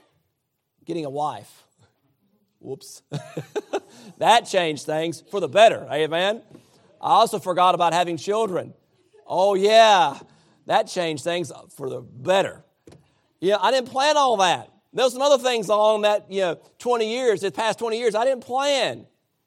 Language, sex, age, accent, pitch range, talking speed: English, male, 40-59, American, 125-160 Hz, 150 wpm